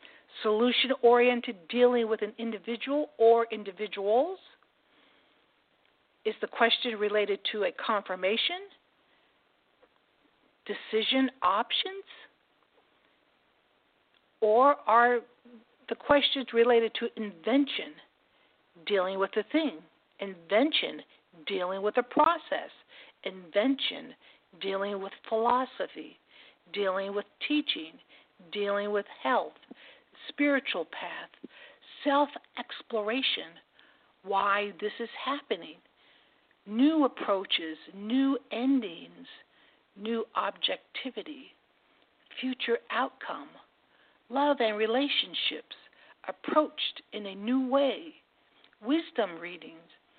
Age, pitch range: 50-69, 205-280 Hz